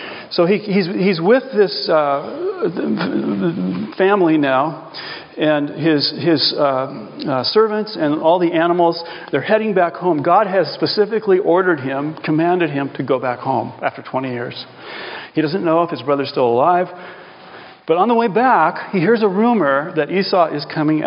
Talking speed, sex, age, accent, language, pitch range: 165 wpm, male, 40-59, American, English, 155-205 Hz